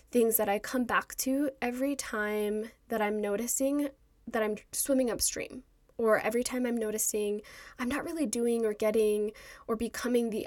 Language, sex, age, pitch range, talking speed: English, female, 10-29, 215-250 Hz, 165 wpm